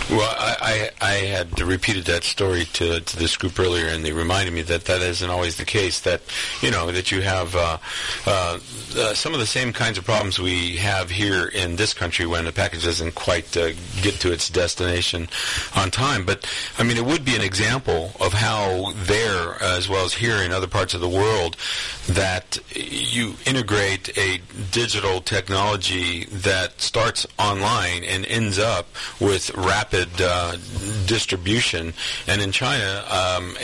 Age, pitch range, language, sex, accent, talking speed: 40-59, 90-105 Hz, English, male, American, 175 wpm